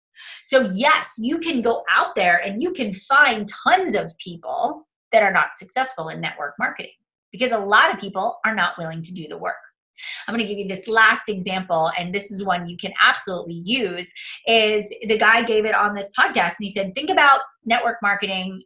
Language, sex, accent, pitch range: English, female, American, 200-275 Hz